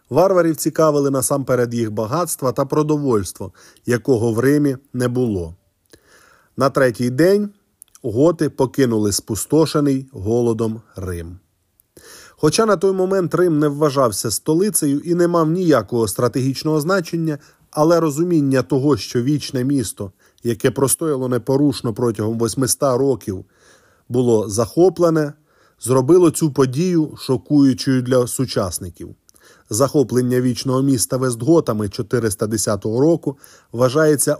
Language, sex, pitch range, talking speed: Ukrainian, male, 115-160 Hz, 105 wpm